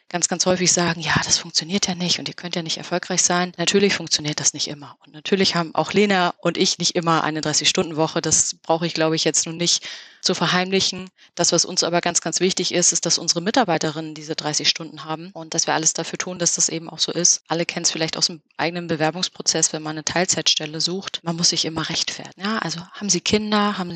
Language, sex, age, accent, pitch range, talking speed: German, female, 20-39, German, 165-185 Hz, 235 wpm